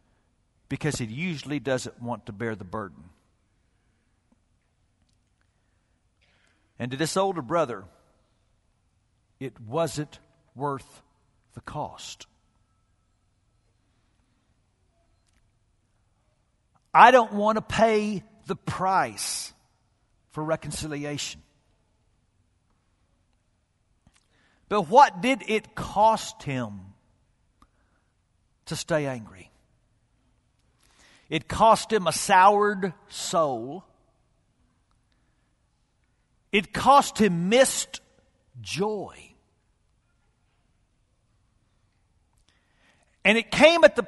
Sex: male